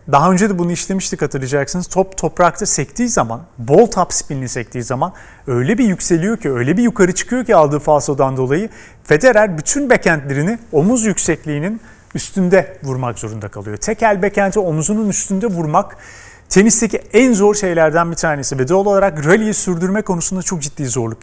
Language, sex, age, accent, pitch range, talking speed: Turkish, male, 40-59, native, 145-200 Hz, 160 wpm